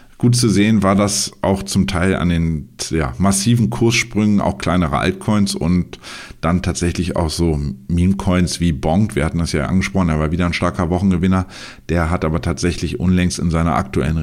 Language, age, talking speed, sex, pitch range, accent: German, 50-69, 180 wpm, male, 85-100 Hz, German